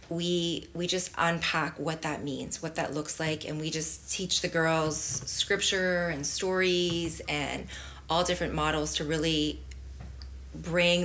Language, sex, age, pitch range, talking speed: English, female, 30-49, 150-175 Hz, 145 wpm